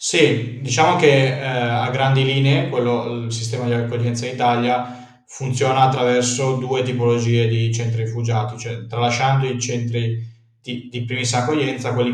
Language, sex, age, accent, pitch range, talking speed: Italian, male, 20-39, native, 115-125 Hz, 150 wpm